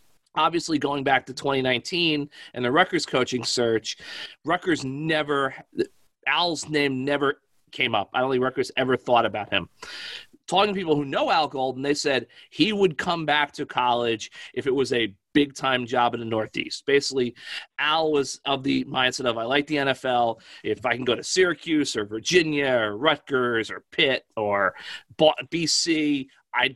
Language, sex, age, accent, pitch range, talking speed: English, male, 30-49, American, 130-160 Hz, 170 wpm